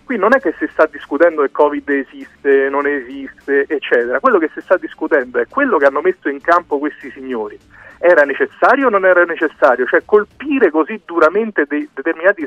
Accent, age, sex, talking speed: native, 40-59, male, 190 wpm